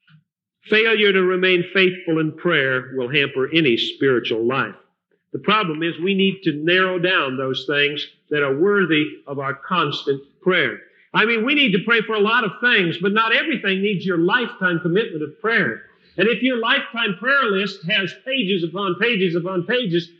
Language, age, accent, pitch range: English, 50-69, American, 160-215 Hz